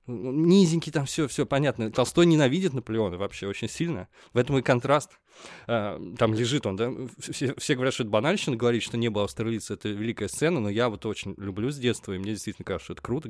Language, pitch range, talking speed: Russian, 105-135 Hz, 210 wpm